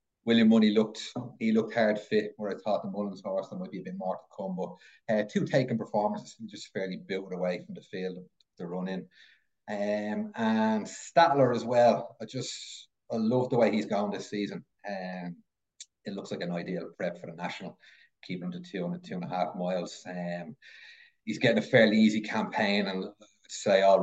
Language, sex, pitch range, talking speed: English, male, 100-155 Hz, 210 wpm